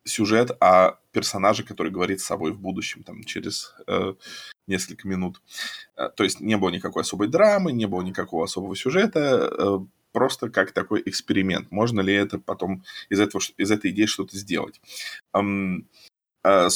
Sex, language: male, Russian